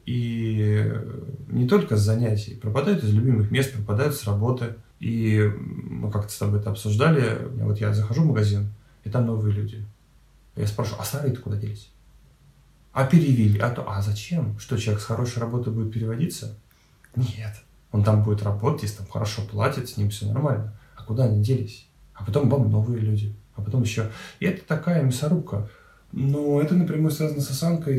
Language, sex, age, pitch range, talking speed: Russian, male, 20-39, 105-130 Hz, 180 wpm